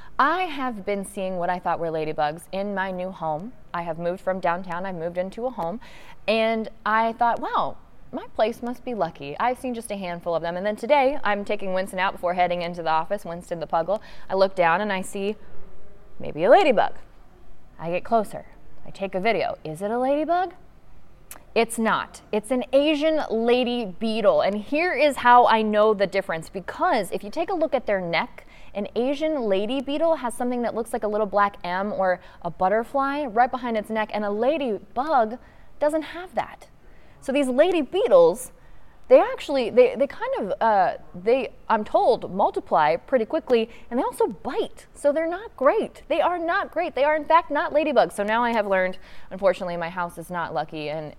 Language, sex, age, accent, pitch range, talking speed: English, female, 20-39, American, 180-275 Hz, 200 wpm